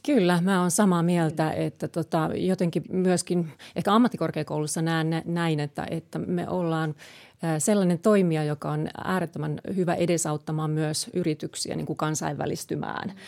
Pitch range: 155-180 Hz